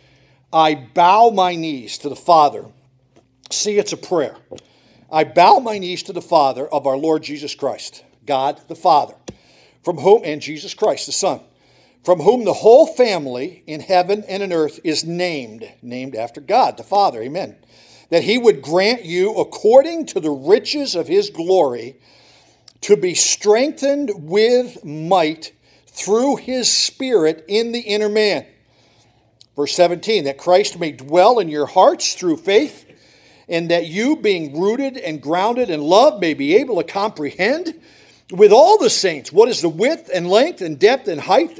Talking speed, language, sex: 165 wpm, English, male